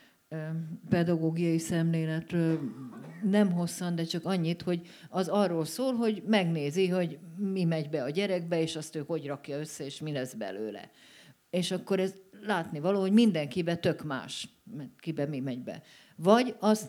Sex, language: female, Hungarian